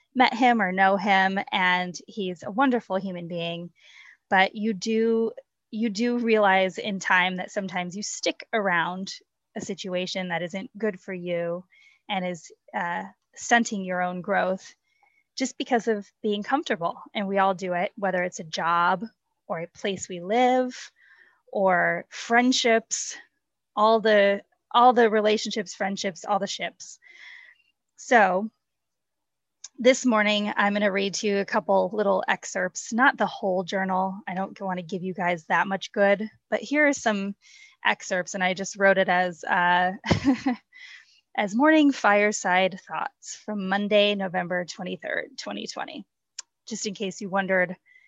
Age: 20-39